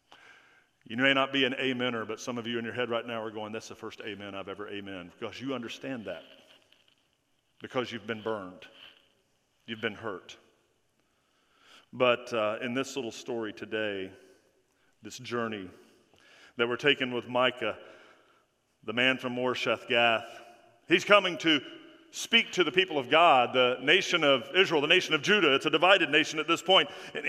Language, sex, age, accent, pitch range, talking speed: English, male, 50-69, American, 120-190 Hz, 175 wpm